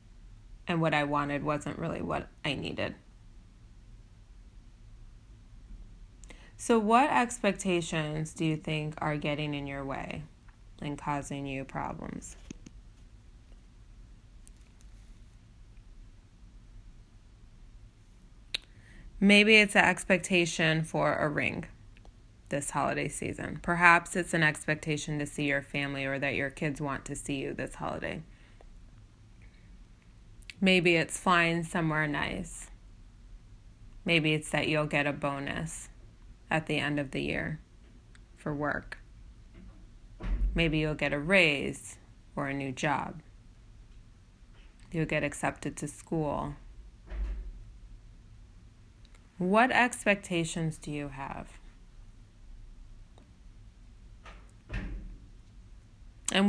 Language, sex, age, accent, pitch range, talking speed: English, female, 20-39, American, 105-160 Hz, 100 wpm